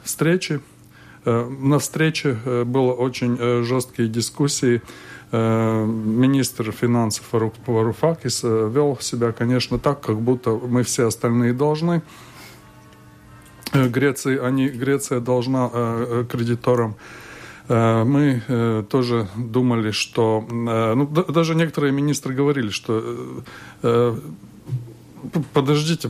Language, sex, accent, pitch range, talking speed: Russian, male, native, 115-145 Hz, 85 wpm